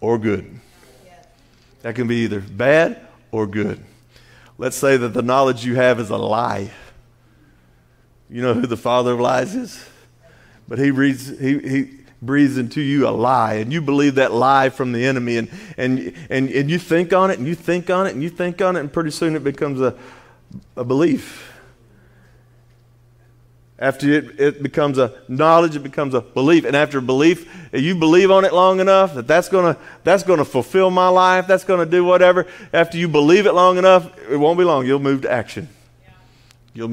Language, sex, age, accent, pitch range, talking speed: English, male, 40-59, American, 120-170 Hz, 195 wpm